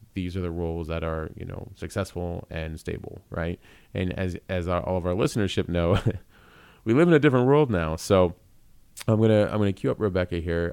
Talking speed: 220 wpm